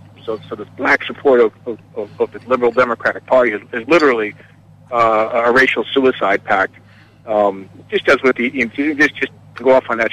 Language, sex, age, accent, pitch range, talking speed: English, male, 40-59, American, 115-135 Hz, 200 wpm